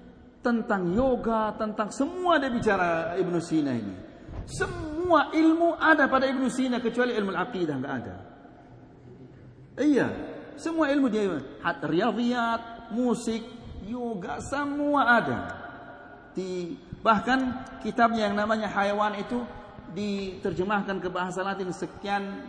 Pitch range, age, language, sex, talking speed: 190-260 Hz, 50-69, Malay, male, 110 wpm